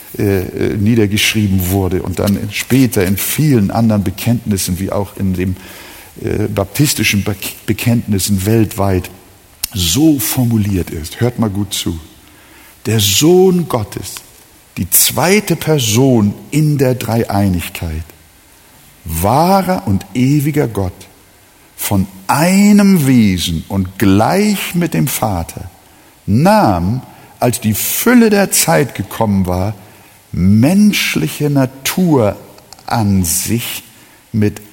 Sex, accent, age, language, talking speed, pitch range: male, German, 60-79, German, 100 wpm, 100-145 Hz